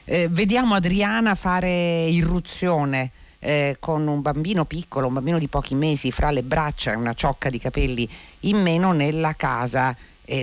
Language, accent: Italian, native